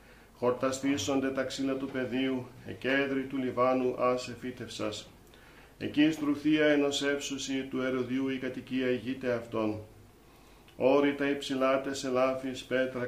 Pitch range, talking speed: 125-135 Hz, 115 wpm